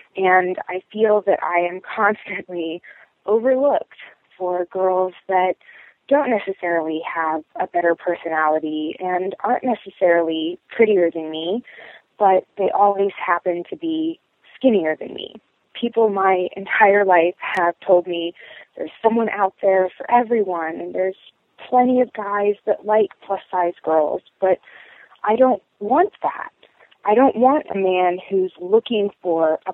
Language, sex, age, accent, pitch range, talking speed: English, female, 20-39, American, 175-225 Hz, 135 wpm